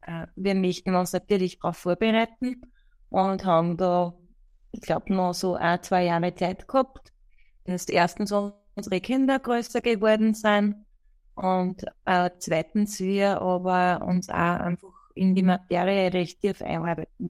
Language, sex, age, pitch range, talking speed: German, female, 20-39, 180-220 Hz, 140 wpm